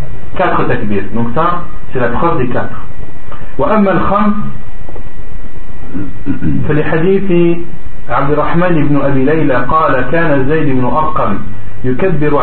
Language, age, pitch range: French, 40-59, 120-160 Hz